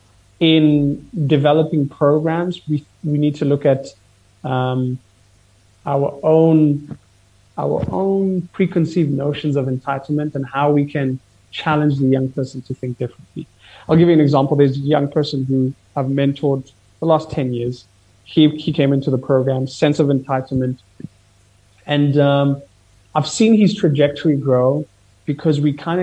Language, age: English, 30-49